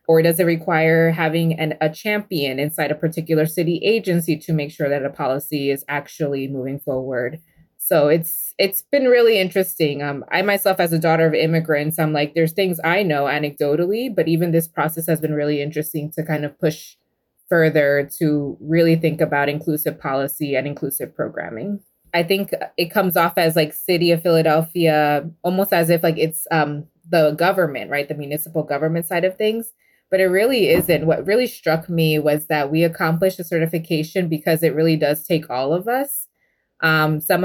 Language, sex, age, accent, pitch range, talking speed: English, female, 20-39, American, 150-175 Hz, 185 wpm